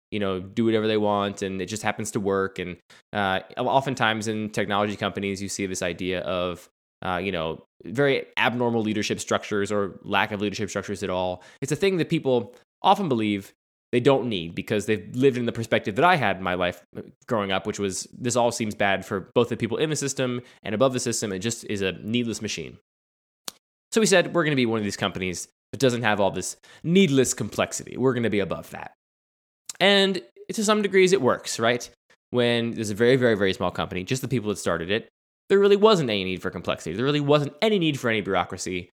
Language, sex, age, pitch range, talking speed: English, male, 20-39, 95-130 Hz, 220 wpm